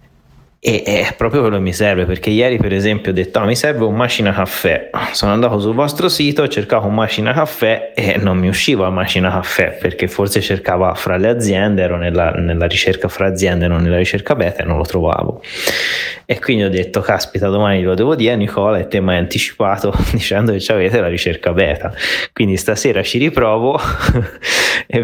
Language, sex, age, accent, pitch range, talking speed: Italian, male, 20-39, native, 90-105 Hz, 185 wpm